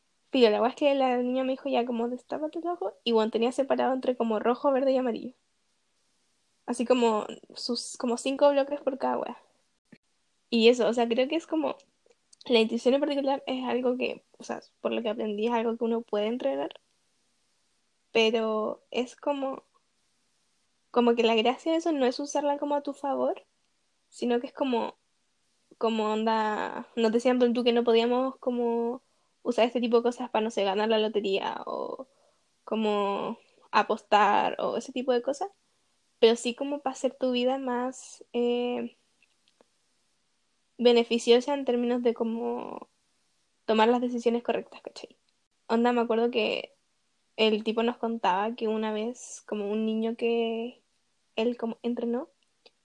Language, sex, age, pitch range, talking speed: Spanish, female, 10-29, 230-265 Hz, 165 wpm